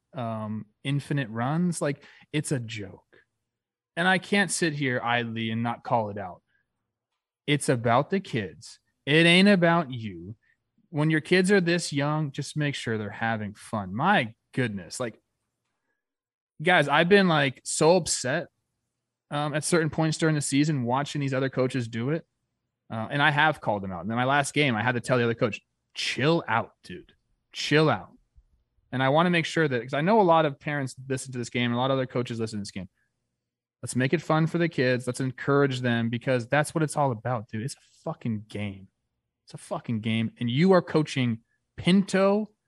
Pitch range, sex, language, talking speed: 120-165 Hz, male, English, 200 wpm